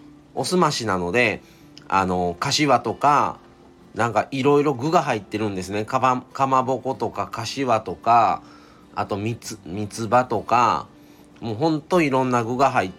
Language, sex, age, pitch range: Japanese, male, 40-59, 105-145 Hz